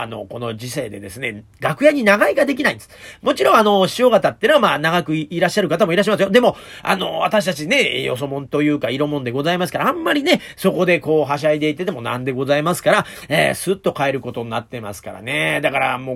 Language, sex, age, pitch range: Japanese, male, 40-59, 150-230 Hz